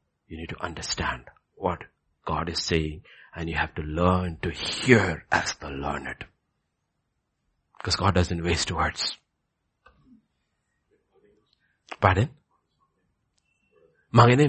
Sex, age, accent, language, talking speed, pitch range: male, 60-79, Indian, English, 105 wpm, 90-140 Hz